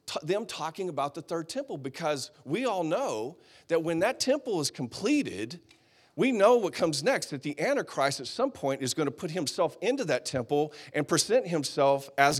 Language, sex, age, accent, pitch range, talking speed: English, male, 40-59, American, 150-195 Hz, 190 wpm